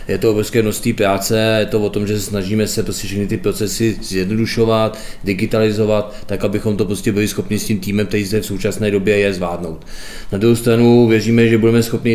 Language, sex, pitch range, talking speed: Czech, male, 95-110 Hz, 195 wpm